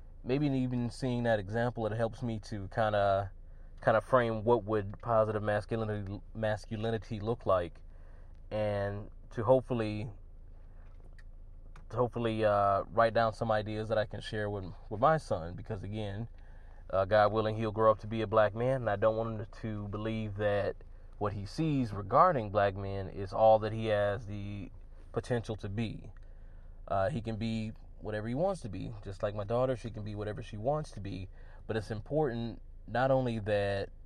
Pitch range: 95-115 Hz